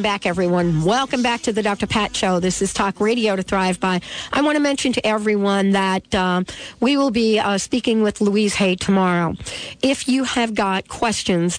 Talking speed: 195 wpm